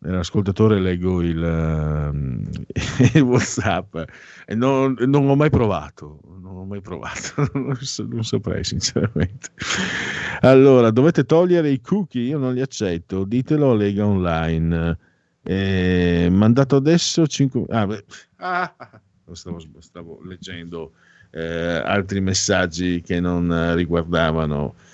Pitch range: 95-145 Hz